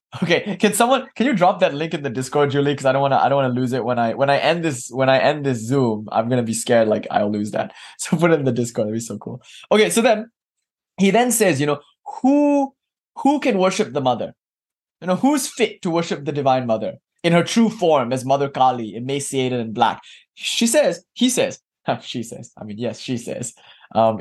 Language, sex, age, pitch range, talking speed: English, male, 20-39, 130-185 Hz, 240 wpm